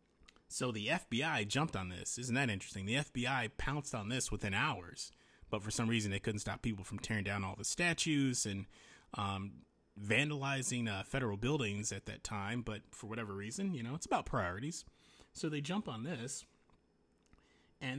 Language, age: English, 30-49